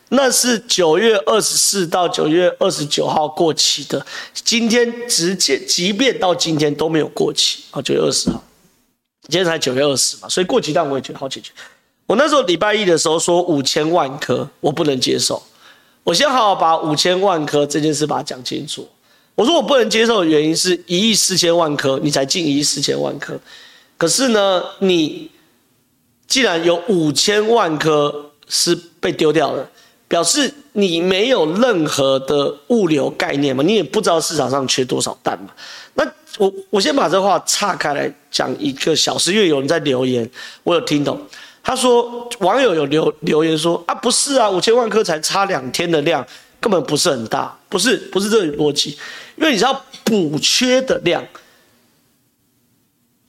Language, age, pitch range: Chinese, 30-49, 155-225 Hz